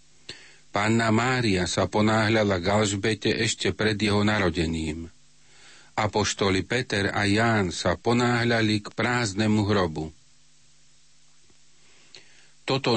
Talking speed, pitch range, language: 95 wpm, 100-115 Hz, Slovak